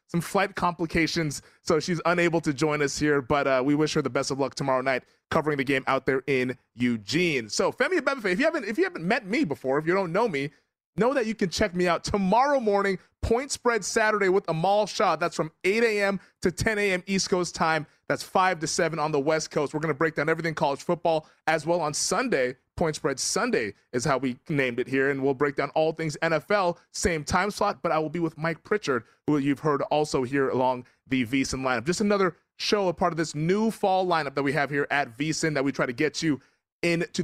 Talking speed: 235 wpm